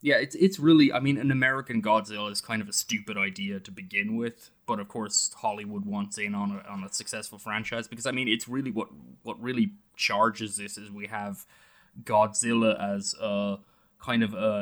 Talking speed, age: 200 wpm, 20-39